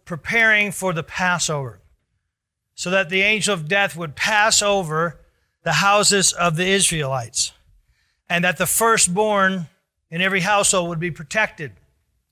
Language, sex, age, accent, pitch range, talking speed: English, male, 40-59, American, 165-205 Hz, 135 wpm